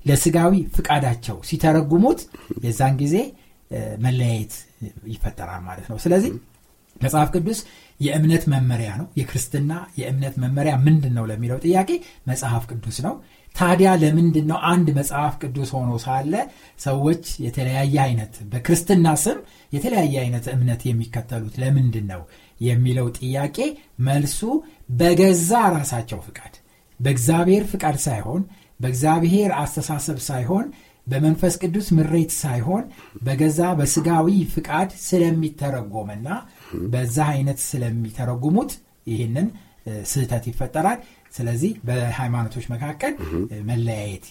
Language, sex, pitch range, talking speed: Amharic, male, 120-175 Hz, 85 wpm